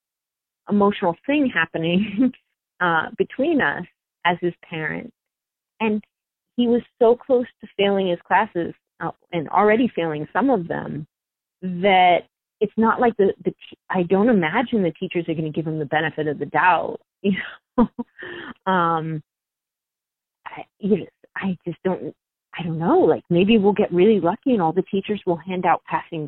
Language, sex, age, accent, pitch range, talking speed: English, female, 30-49, American, 170-225 Hz, 160 wpm